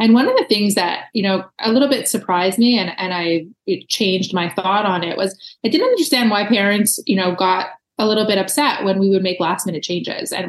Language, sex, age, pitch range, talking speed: English, female, 20-39, 185-225 Hz, 240 wpm